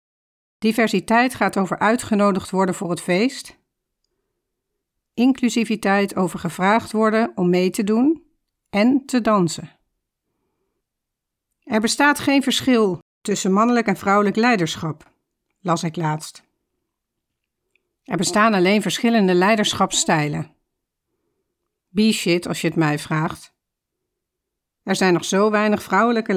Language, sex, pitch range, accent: Dutch, female, 185-235 Hz, Dutch